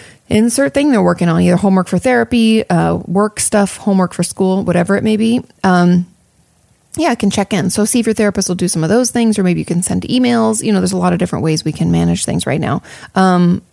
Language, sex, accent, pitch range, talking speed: English, female, American, 180-220 Hz, 250 wpm